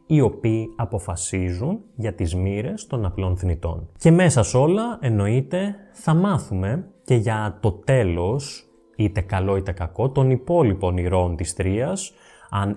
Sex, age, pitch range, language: male, 20-39, 95-130 Hz, Greek